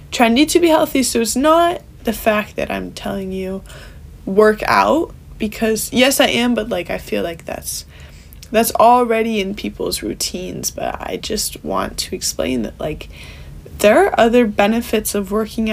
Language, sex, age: English, female, 10-29